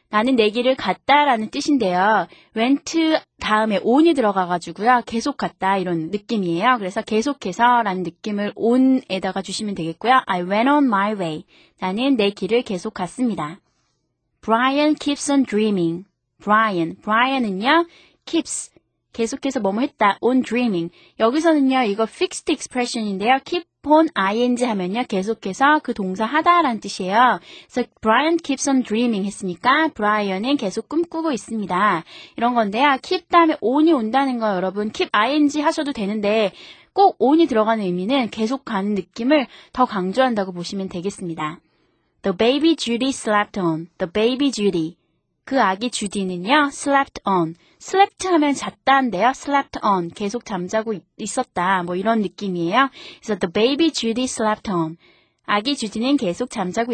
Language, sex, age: Korean, female, 20-39